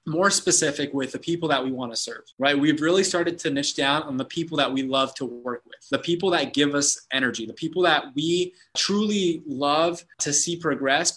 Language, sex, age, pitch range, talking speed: English, male, 20-39, 135-165 Hz, 220 wpm